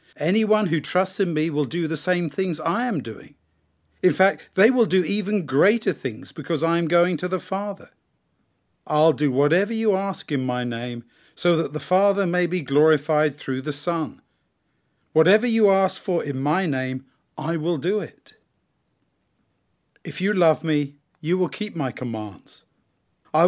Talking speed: 170 wpm